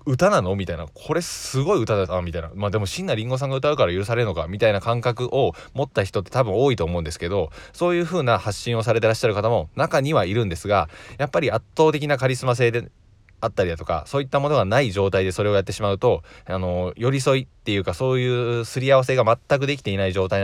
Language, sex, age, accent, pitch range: Japanese, male, 20-39, native, 90-125 Hz